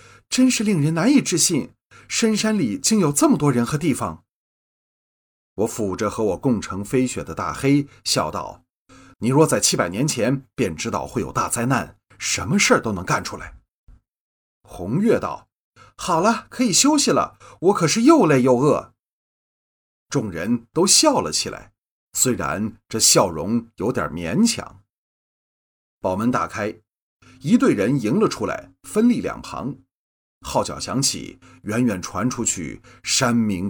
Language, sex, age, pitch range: Chinese, male, 30-49, 100-160 Hz